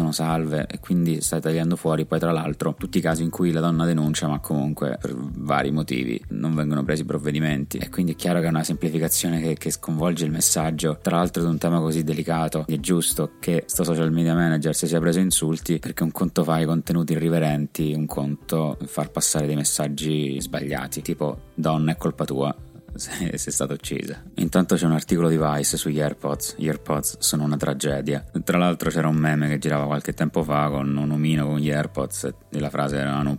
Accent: native